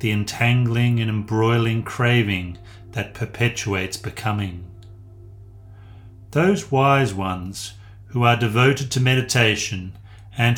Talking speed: 95 wpm